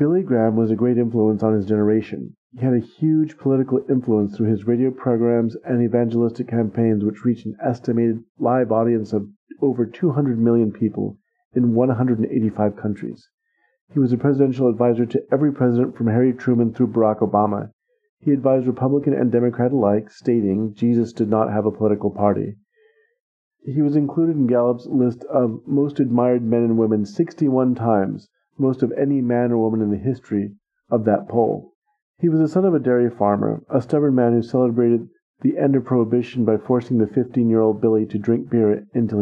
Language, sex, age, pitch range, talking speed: English, male, 40-59, 110-135 Hz, 175 wpm